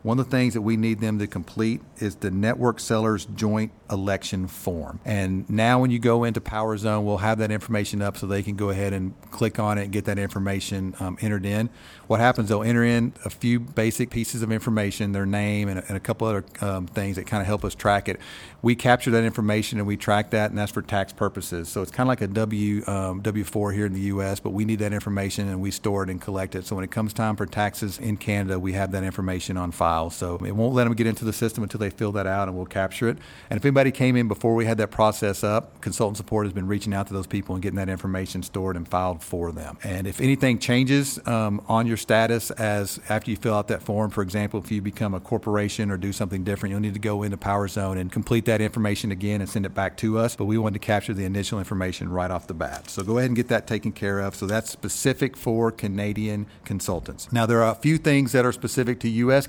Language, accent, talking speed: English, American, 255 wpm